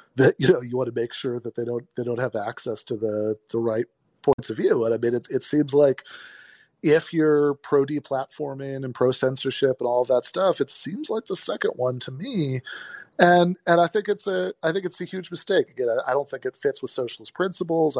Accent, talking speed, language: American, 230 wpm, English